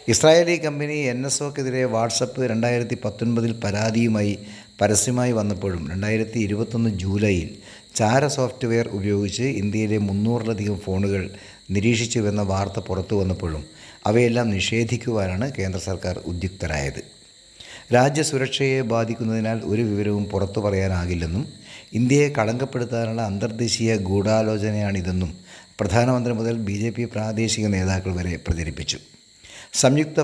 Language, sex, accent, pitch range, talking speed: Malayalam, male, native, 100-120 Hz, 90 wpm